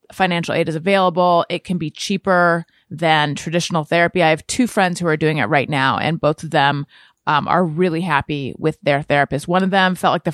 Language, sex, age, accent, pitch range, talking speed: English, female, 30-49, American, 165-215 Hz, 220 wpm